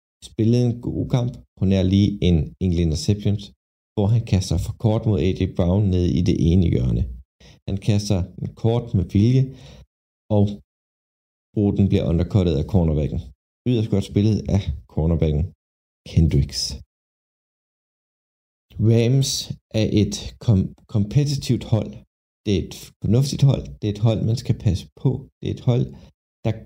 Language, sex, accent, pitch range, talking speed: Danish, male, native, 80-110 Hz, 145 wpm